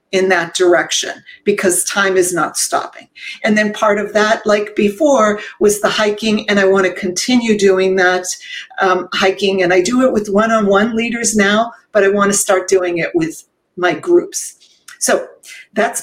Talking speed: 170 wpm